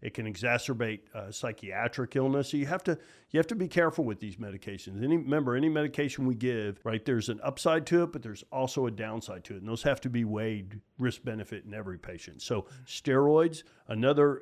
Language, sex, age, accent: English, male, 50-69, American